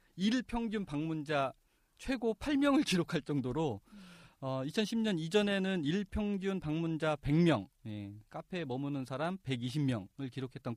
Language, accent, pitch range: Korean, native, 120-170 Hz